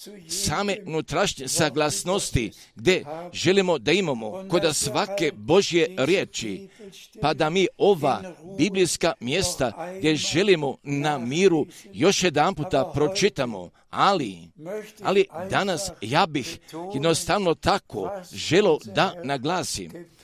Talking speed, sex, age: 105 wpm, male, 50-69